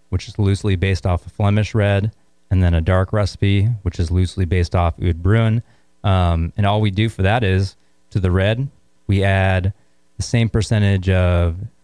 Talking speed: 190 wpm